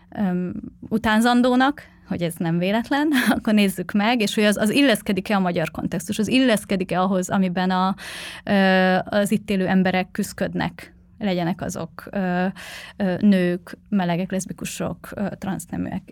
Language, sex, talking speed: Hungarian, female, 120 wpm